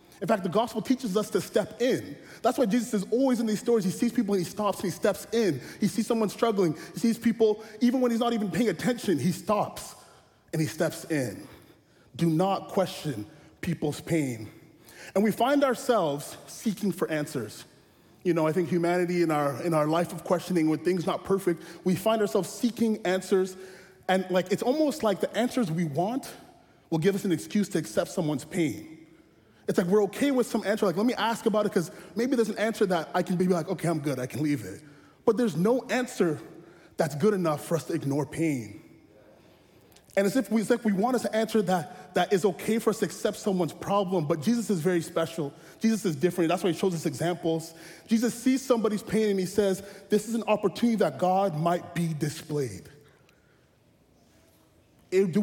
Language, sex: English, male